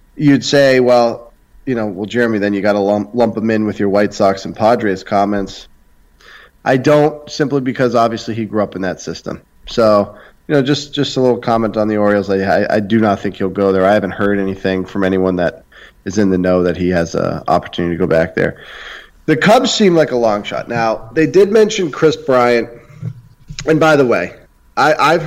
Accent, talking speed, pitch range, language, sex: American, 215 wpm, 95-125 Hz, English, male